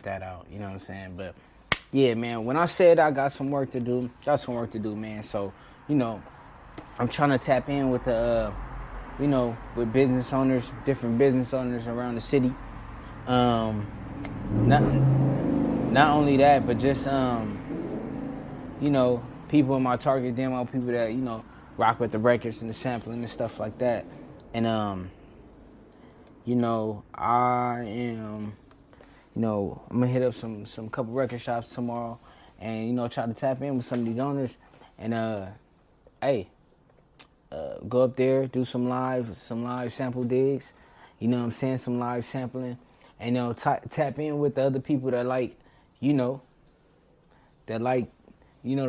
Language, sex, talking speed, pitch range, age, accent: English, male, 185 wpm, 115-135 Hz, 20-39, American